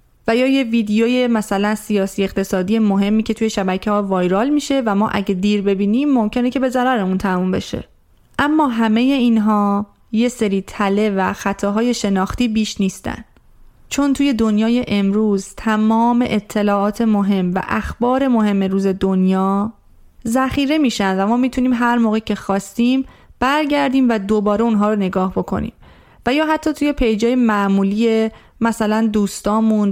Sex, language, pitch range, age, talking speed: female, Persian, 200-245 Hz, 30-49, 145 wpm